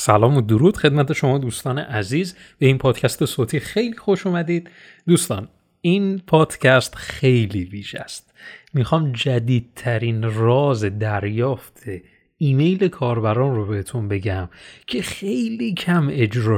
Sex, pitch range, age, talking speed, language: male, 115-155 Hz, 30-49, 120 wpm, Persian